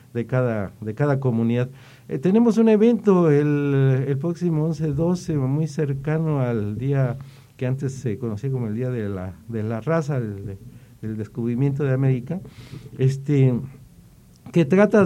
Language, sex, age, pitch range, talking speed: Spanish, male, 50-69, 120-155 Hz, 145 wpm